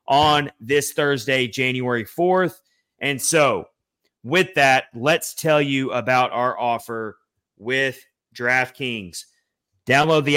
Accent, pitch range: American, 120-140 Hz